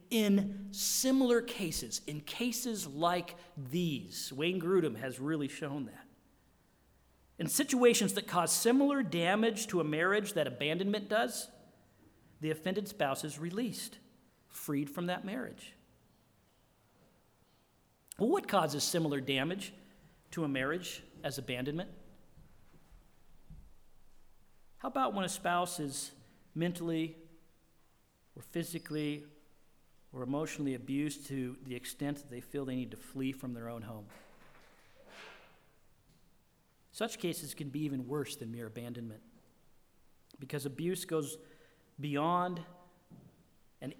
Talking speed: 115 wpm